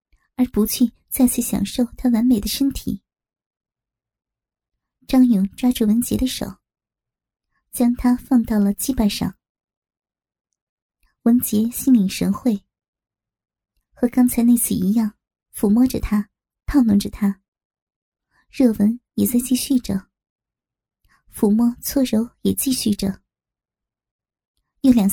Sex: male